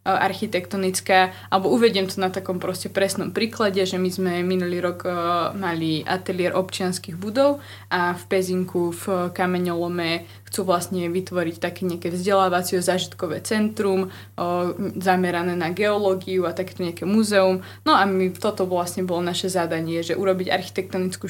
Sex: female